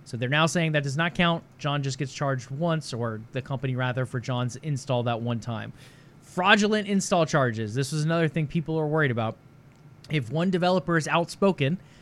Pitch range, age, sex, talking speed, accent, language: 130-165 Hz, 20-39, male, 195 wpm, American, English